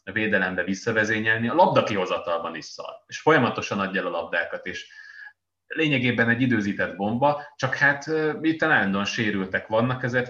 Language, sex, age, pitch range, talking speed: Hungarian, male, 20-39, 95-115 Hz, 150 wpm